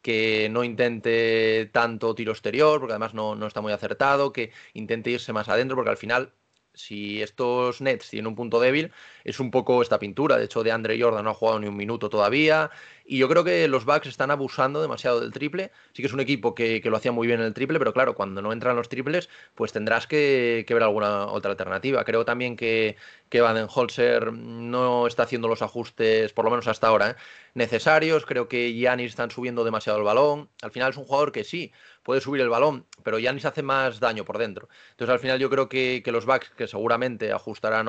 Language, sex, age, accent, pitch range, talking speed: Spanish, male, 20-39, Spanish, 115-130 Hz, 225 wpm